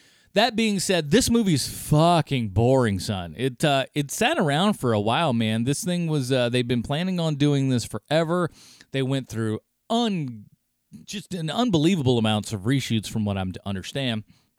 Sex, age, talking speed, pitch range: male, 30-49, 175 wpm, 105-150 Hz